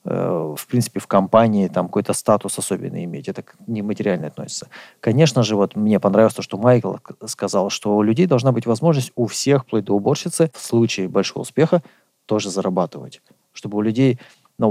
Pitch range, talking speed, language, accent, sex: 105-130 Hz, 165 wpm, Russian, native, male